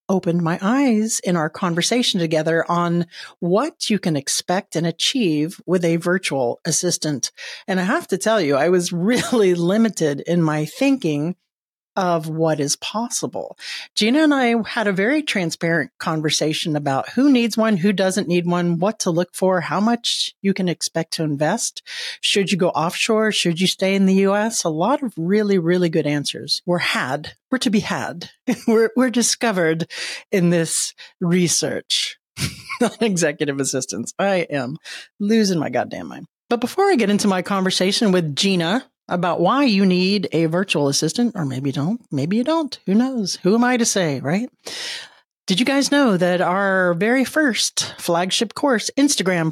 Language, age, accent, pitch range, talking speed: English, 50-69, American, 170-230 Hz, 170 wpm